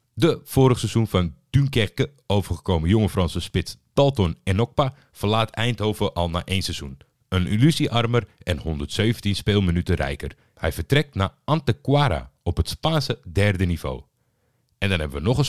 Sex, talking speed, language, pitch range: male, 145 wpm, Dutch, 90-125 Hz